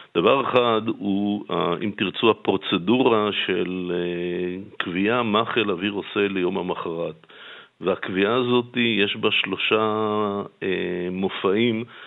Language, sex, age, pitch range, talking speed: Hebrew, male, 50-69, 95-110 Hz, 100 wpm